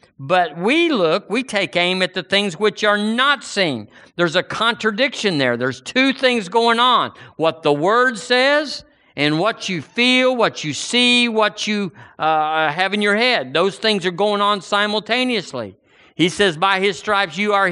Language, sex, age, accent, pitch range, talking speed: English, male, 50-69, American, 160-230 Hz, 180 wpm